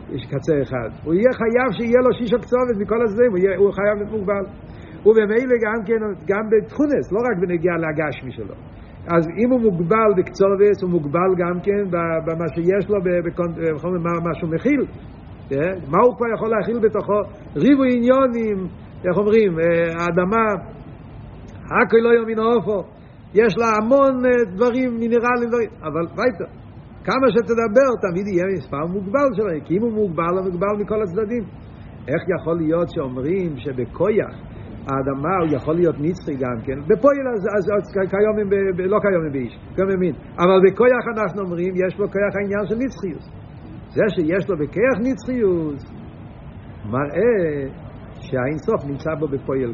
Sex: male